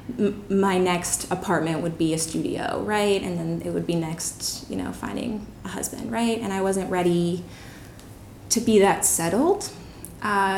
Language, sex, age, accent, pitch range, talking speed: English, female, 20-39, American, 165-195 Hz, 165 wpm